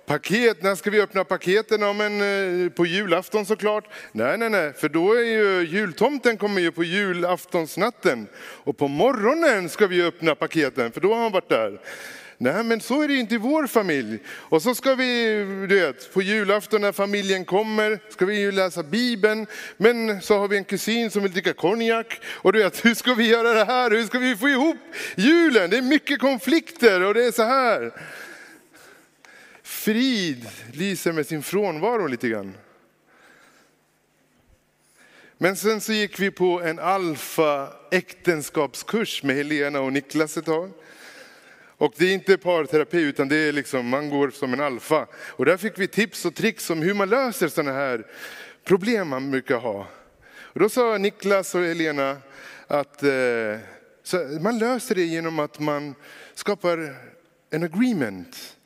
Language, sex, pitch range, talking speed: Swedish, male, 160-220 Hz, 170 wpm